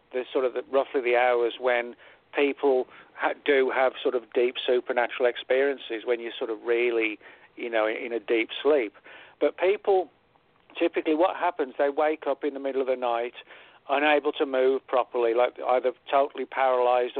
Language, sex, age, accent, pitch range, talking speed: English, male, 50-69, British, 125-150 Hz, 180 wpm